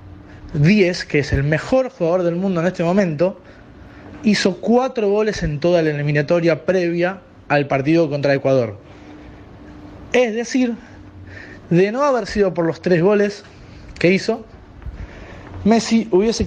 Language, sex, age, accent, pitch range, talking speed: Spanish, male, 20-39, Argentinian, 135-205 Hz, 135 wpm